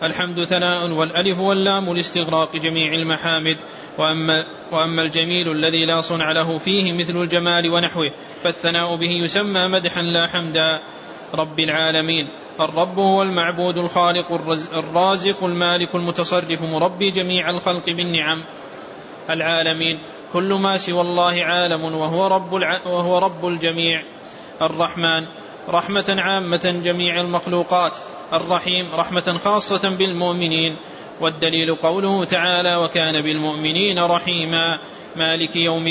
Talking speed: 105 wpm